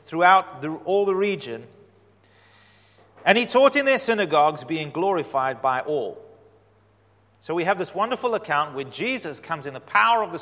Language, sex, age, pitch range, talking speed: English, male, 30-49, 125-170 Hz, 160 wpm